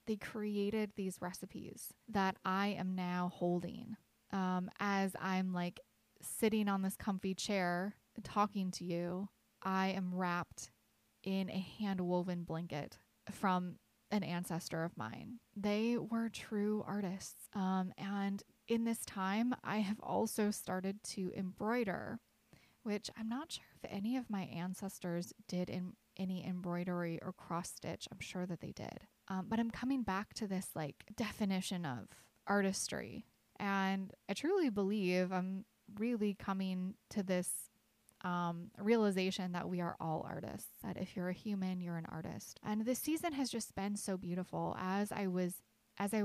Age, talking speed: 20-39, 150 wpm